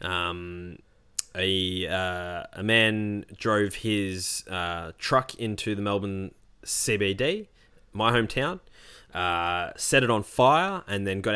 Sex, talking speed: male, 120 wpm